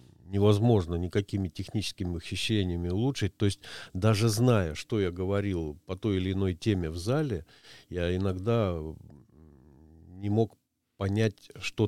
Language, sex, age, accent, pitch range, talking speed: Russian, male, 40-59, native, 90-110 Hz, 125 wpm